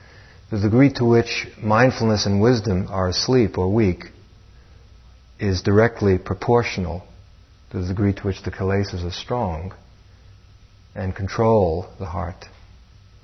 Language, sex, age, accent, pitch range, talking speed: English, male, 50-69, American, 95-105 Hz, 120 wpm